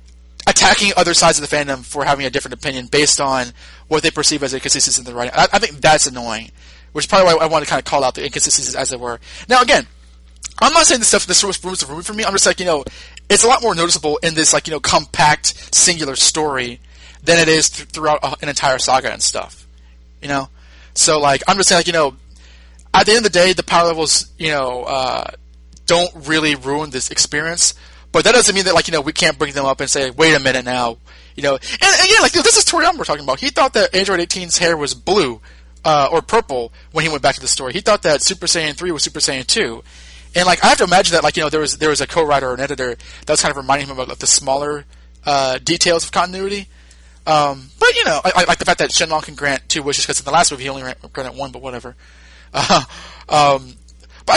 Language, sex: English, male